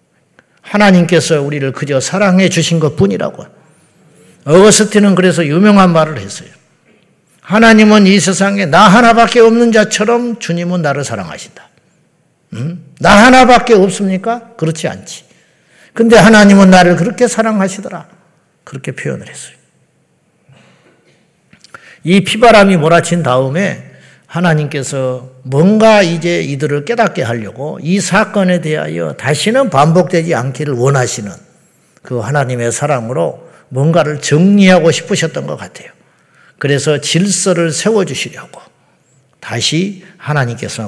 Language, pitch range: Korean, 140-195 Hz